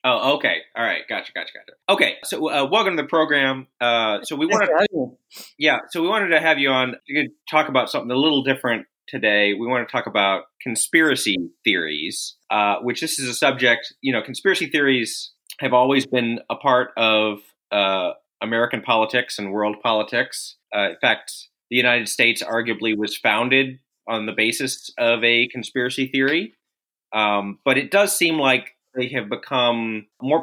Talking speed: 180 wpm